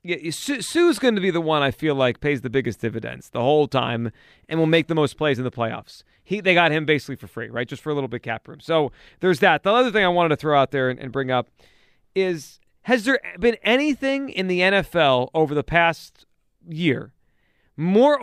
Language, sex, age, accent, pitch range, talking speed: English, male, 30-49, American, 150-255 Hz, 225 wpm